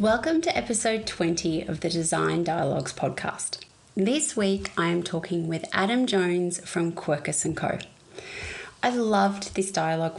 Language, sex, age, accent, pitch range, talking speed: English, female, 30-49, Australian, 175-220 Hz, 140 wpm